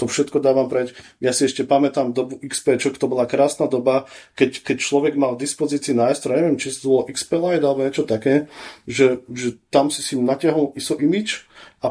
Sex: male